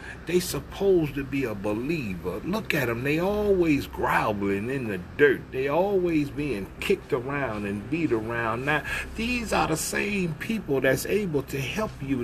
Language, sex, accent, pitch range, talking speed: English, male, American, 110-165 Hz, 165 wpm